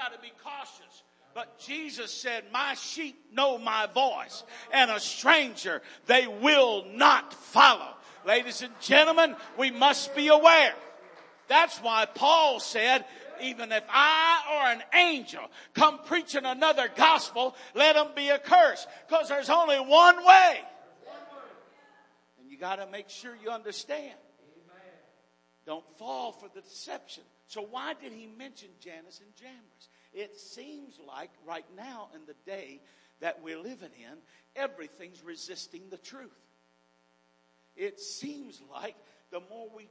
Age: 50-69